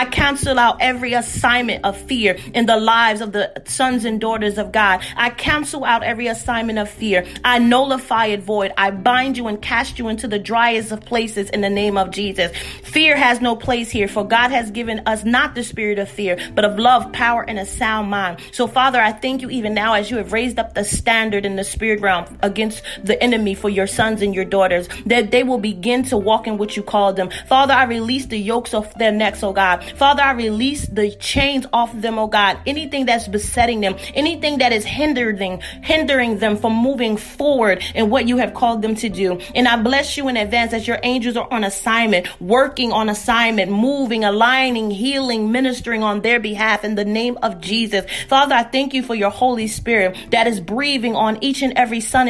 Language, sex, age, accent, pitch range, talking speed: English, female, 30-49, American, 210-250 Hz, 215 wpm